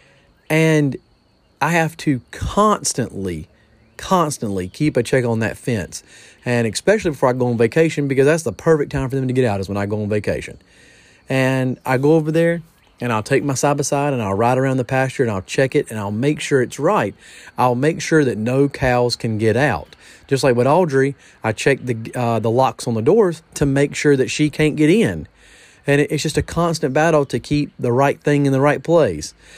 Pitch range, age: 100-145 Hz, 30-49